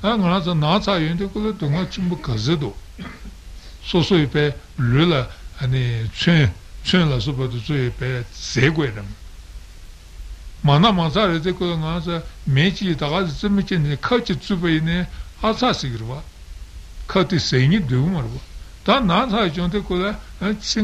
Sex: male